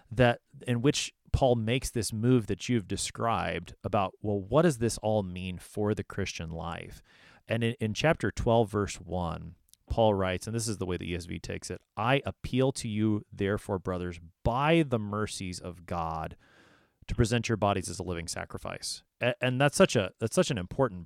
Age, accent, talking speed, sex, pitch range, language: 30-49, American, 190 wpm, male, 95-125 Hz, English